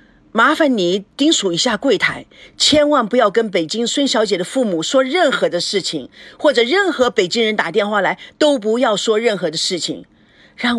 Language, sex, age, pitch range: Chinese, female, 50-69, 185-290 Hz